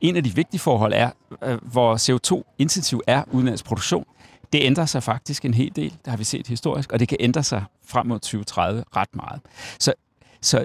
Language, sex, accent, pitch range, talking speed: Danish, male, native, 115-140 Hz, 190 wpm